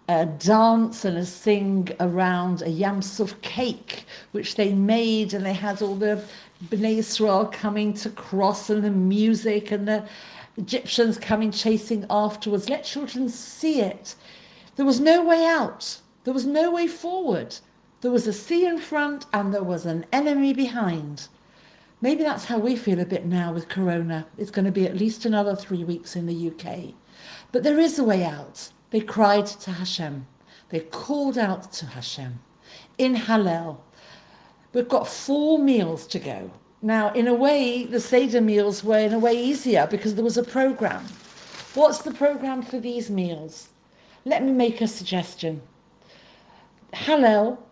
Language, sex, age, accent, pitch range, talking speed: English, female, 60-79, British, 190-255 Hz, 165 wpm